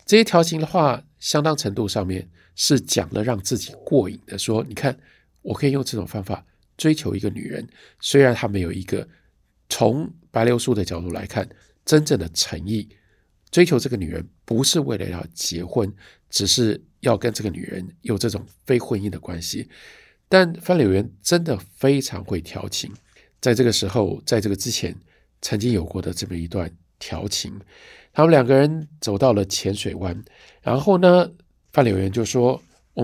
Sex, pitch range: male, 95-145 Hz